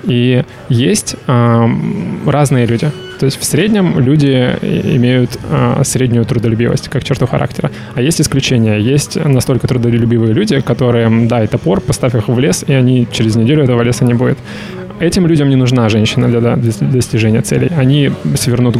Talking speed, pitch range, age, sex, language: 165 wpm, 115-140 Hz, 20-39, male, Russian